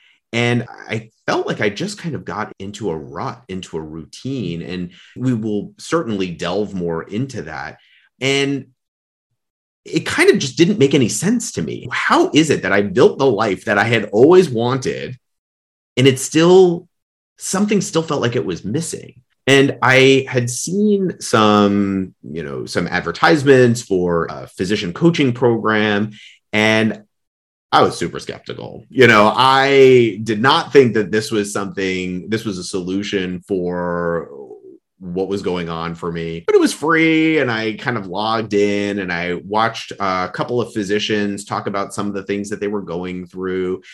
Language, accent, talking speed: English, American, 170 wpm